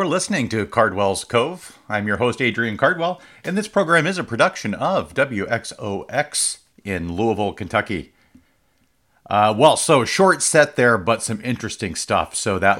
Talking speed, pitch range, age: 155 wpm, 95-115 Hz, 50-69